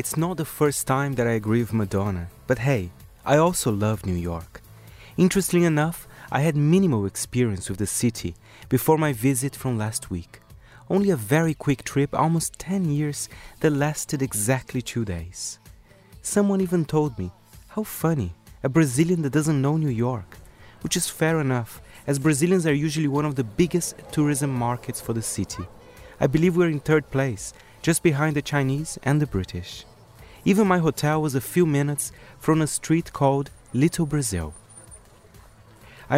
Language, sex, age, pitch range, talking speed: English, male, 30-49, 110-155 Hz, 170 wpm